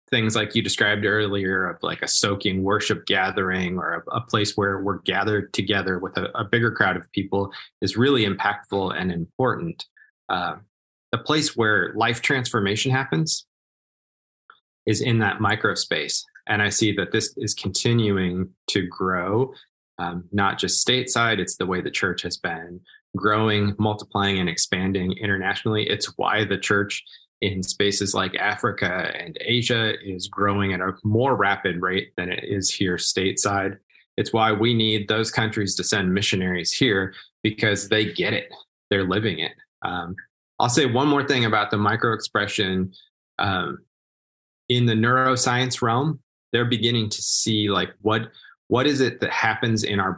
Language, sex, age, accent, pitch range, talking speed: English, male, 20-39, American, 95-115 Hz, 165 wpm